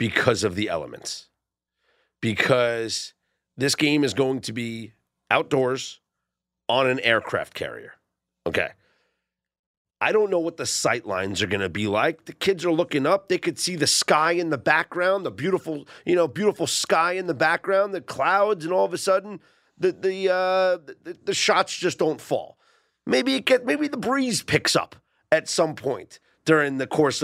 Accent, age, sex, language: American, 40-59, male, English